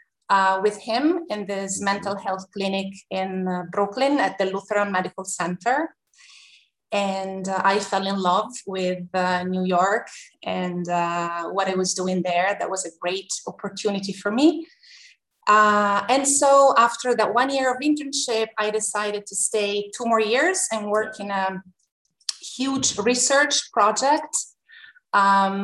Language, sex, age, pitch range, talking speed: English, female, 20-39, 190-230 Hz, 150 wpm